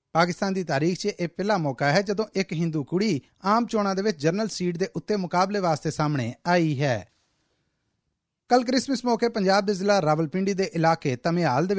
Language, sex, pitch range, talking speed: Punjabi, male, 155-205 Hz, 185 wpm